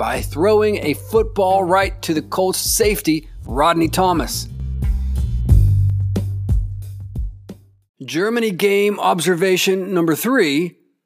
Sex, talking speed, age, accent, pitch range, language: male, 85 wpm, 40-59, American, 150-205 Hz, English